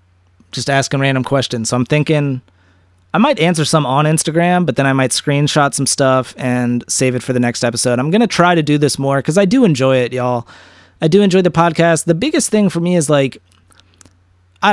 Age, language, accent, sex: 30-49, English, American, male